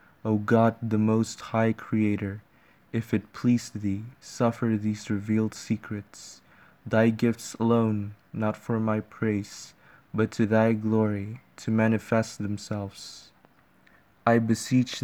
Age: 20-39